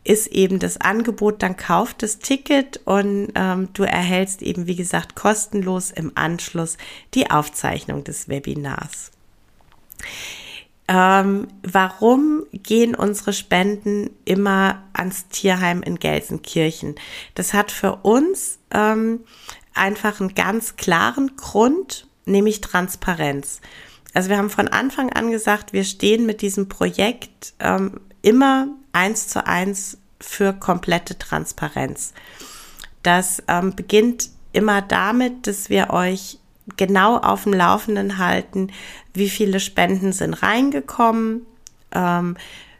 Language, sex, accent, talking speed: German, female, German, 115 wpm